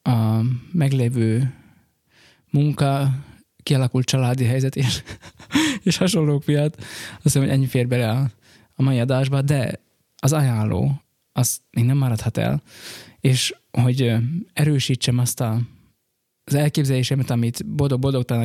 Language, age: Hungarian, 20-39